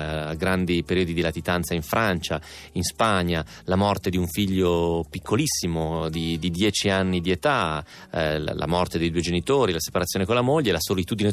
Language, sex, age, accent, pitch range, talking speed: Italian, male, 30-49, native, 80-95 Hz, 175 wpm